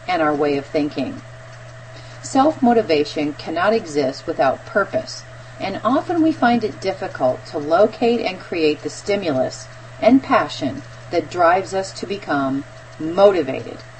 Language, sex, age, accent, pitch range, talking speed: English, female, 40-59, American, 135-230 Hz, 130 wpm